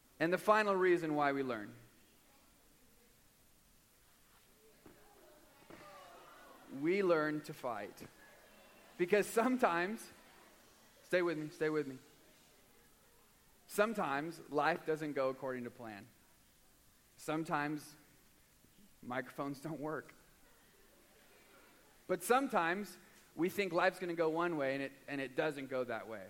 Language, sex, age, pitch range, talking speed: English, male, 30-49, 140-180 Hz, 110 wpm